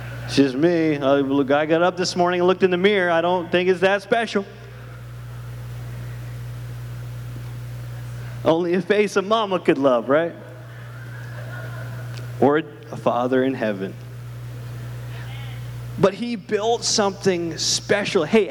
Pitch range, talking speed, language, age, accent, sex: 120-190 Hz, 125 wpm, English, 30-49, American, male